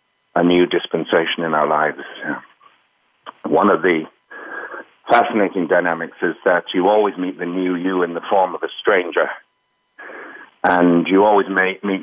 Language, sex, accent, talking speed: English, male, British, 145 wpm